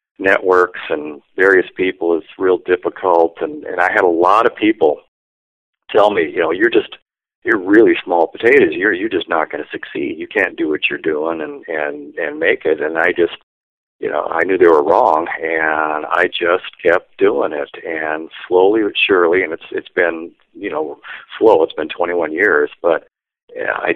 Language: English